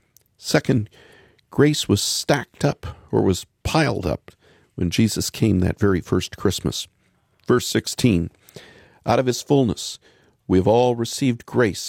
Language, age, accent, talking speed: English, 50-69, American, 130 wpm